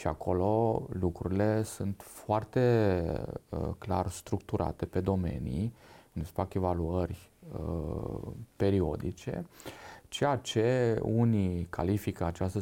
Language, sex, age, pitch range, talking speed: Romanian, male, 30-49, 90-105 Hz, 100 wpm